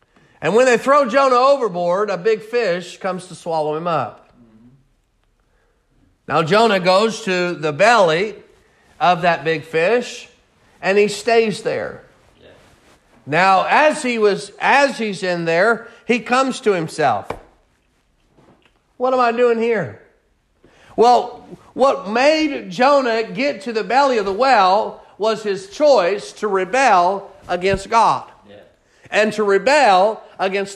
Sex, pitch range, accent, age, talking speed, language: male, 195-260 Hz, American, 40-59, 130 wpm, English